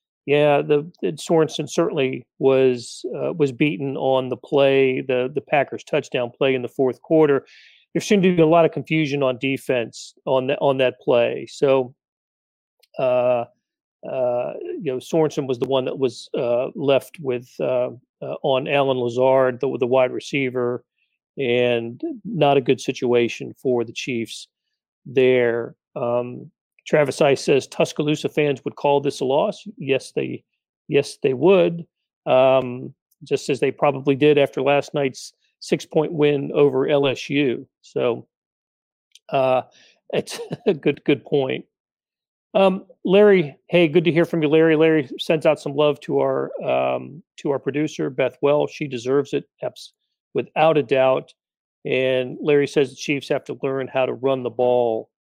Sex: male